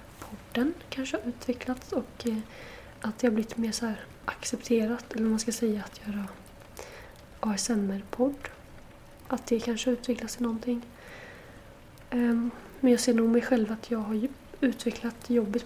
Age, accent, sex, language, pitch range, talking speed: 20-39, native, female, Swedish, 220-245 Hz, 145 wpm